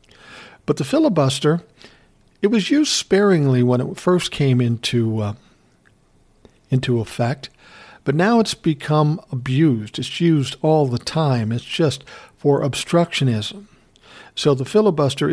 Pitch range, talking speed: 125-160 Hz, 125 wpm